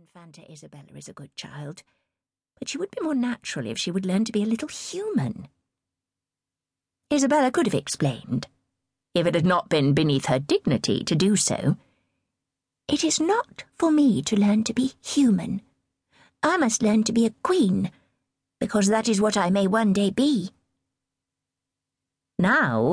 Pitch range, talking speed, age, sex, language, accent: 155-225 Hz, 165 wpm, 50-69, female, English, British